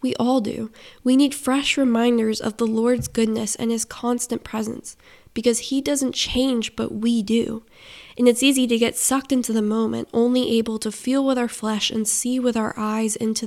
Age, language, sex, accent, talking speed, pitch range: 10-29, English, female, American, 195 wpm, 220-245 Hz